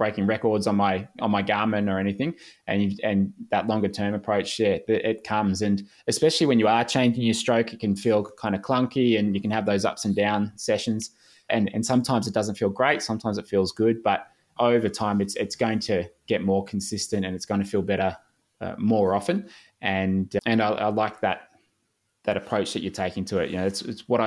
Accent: Australian